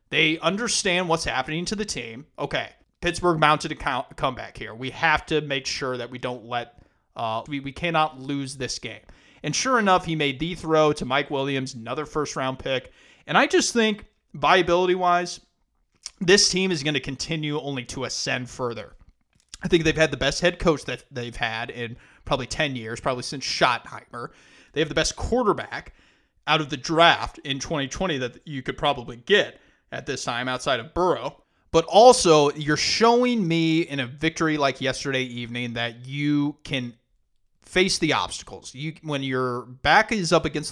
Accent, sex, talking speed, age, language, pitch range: American, male, 180 wpm, 30-49, English, 125-165 Hz